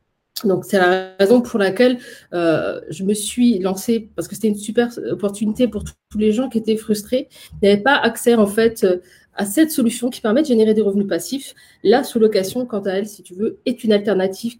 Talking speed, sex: 215 wpm, female